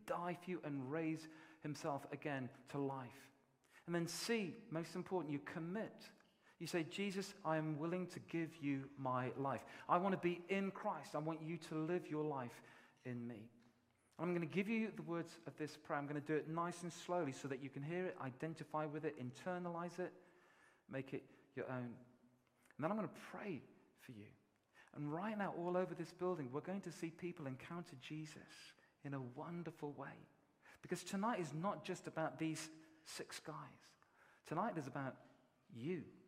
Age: 40-59